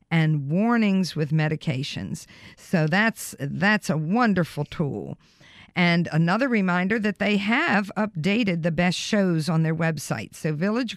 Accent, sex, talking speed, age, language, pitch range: American, female, 135 wpm, 50-69, English, 160-210 Hz